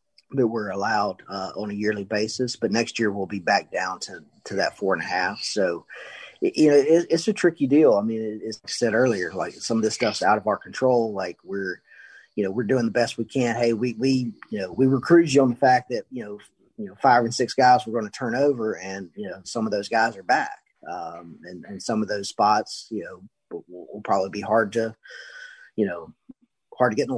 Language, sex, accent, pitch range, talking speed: English, male, American, 105-130 Hz, 245 wpm